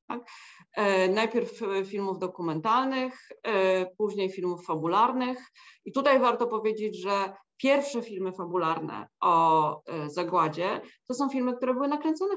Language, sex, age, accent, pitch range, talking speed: Polish, female, 30-49, native, 190-260 Hz, 110 wpm